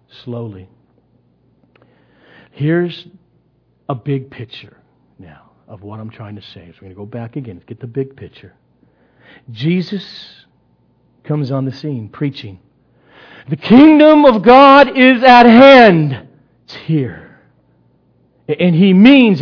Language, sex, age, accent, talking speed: English, male, 50-69, American, 125 wpm